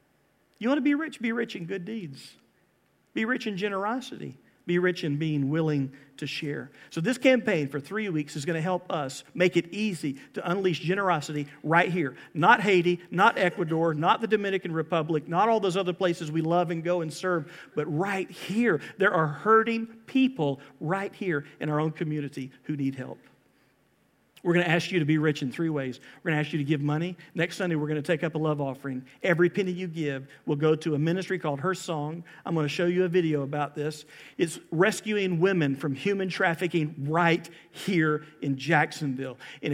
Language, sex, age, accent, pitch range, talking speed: English, male, 50-69, American, 150-185 Hz, 205 wpm